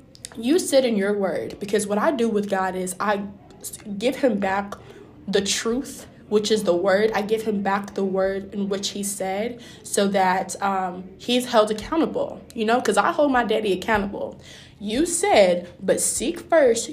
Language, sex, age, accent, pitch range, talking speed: English, female, 20-39, American, 200-230 Hz, 180 wpm